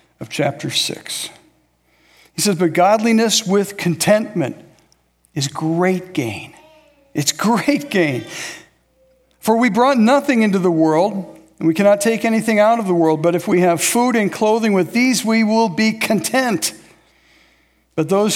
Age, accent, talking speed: 60-79, American, 150 wpm